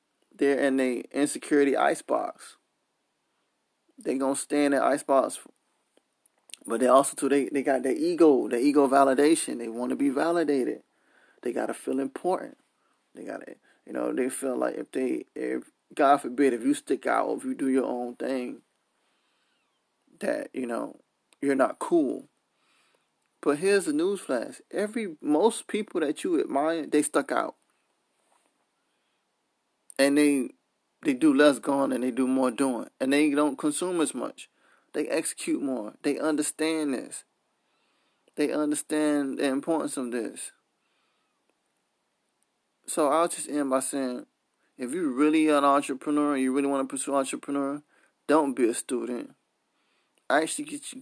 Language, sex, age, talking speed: English, male, 20-39, 155 wpm